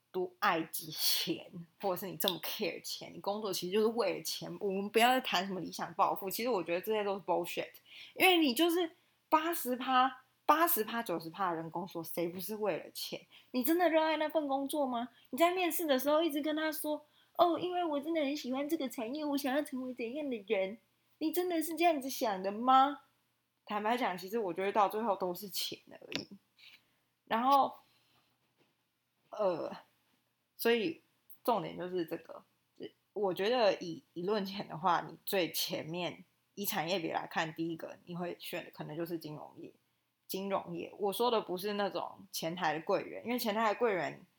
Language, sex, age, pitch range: Chinese, female, 20-39, 175-270 Hz